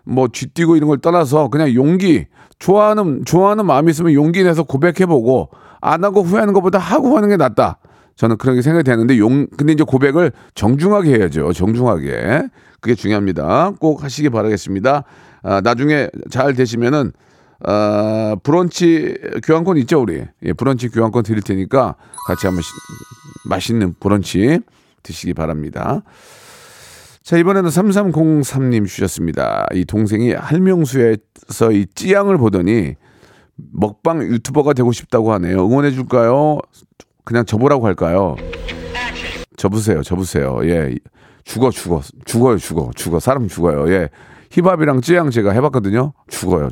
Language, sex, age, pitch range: Korean, male, 40-59, 105-160 Hz